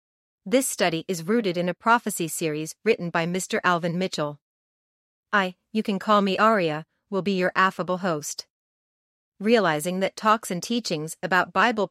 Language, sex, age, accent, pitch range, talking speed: English, female, 40-59, American, 175-215 Hz, 155 wpm